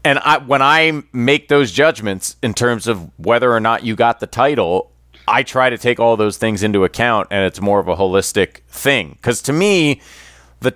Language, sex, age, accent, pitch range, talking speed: English, male, 30-49, American, 90-125 Hz, 210 wpm